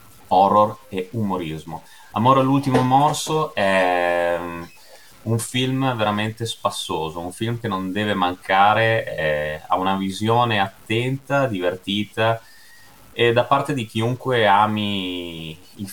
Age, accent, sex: 30-49, native, male